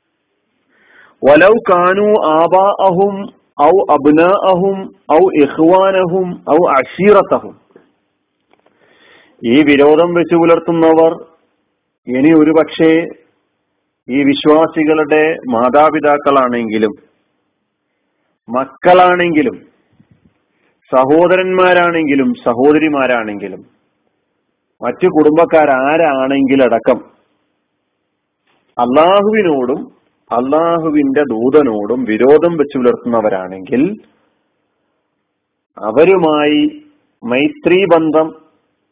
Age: 40-59